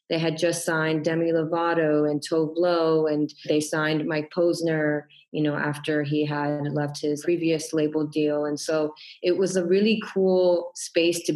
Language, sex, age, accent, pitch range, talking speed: English, female, 20-39, American, 150-160 Hz, 175 wpm